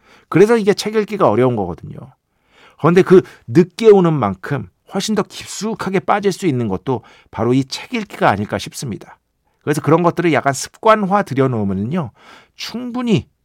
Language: Korean